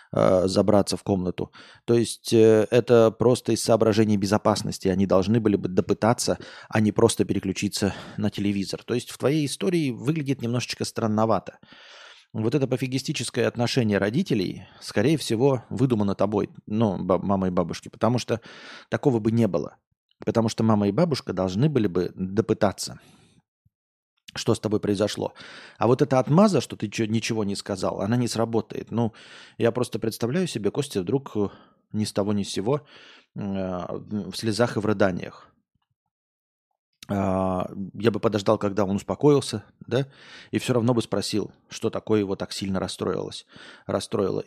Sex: male